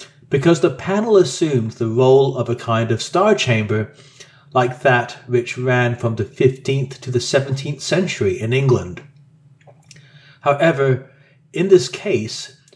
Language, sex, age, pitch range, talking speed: English, male, 40-59, 130-150 Hz, 135 wpm